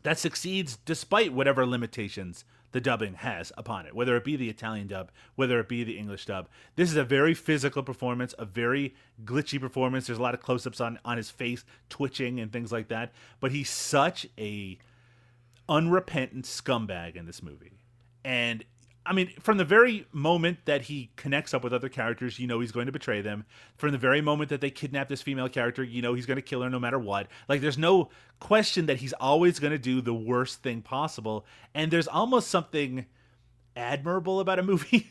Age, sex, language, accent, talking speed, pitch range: 30-49, male, English, American, 200 wpm, 120-145 Hz